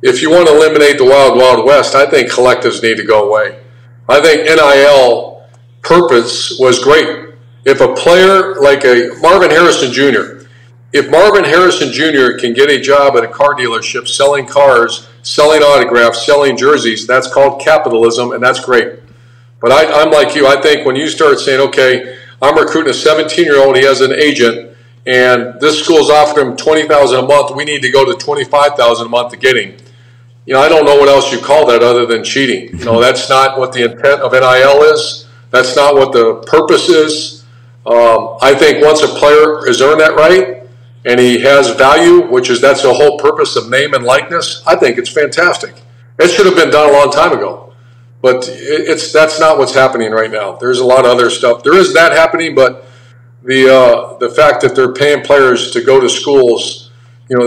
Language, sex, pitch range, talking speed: English, male, 120-155 Hz, 200 wpm